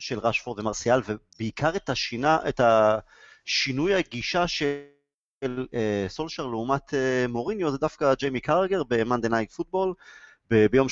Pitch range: 125-185 Hz